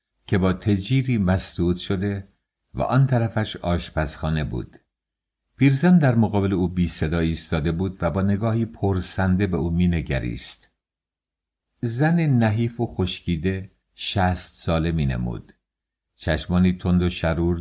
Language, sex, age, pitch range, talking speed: English, male, 50-69, 85-100 Hz, 130 wpm